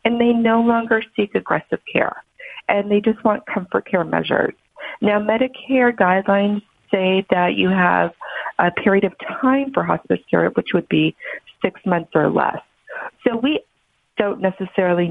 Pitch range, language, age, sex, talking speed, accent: 175-235 Hz, English, 40-59, female, 155 wpm, American